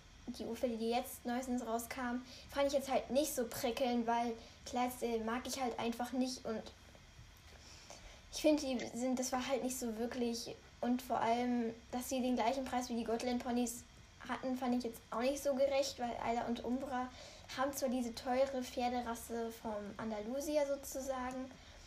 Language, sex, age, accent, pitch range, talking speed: German, female, 10-29, German, 230-265 Hz, 175 wpm